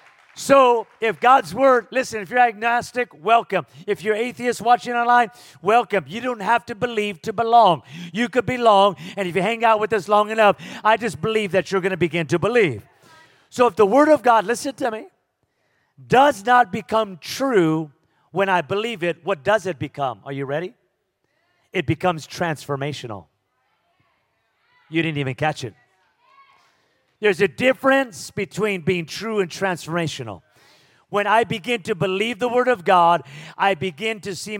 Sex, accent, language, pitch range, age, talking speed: male, American, English, 175-230 Hz, 40-59, 170 wpm